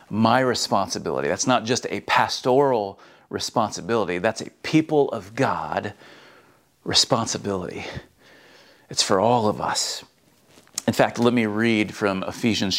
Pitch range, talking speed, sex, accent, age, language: 110-135 Hz, 120 wpm, male, American, 40-59, English